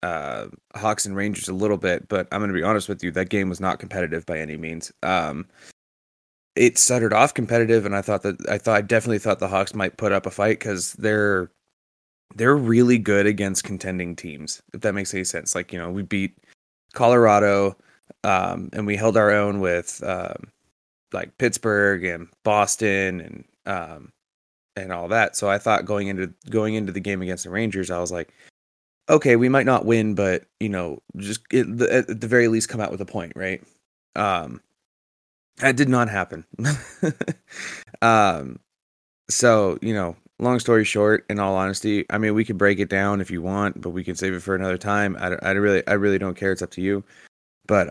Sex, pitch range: male, 90-110 Hz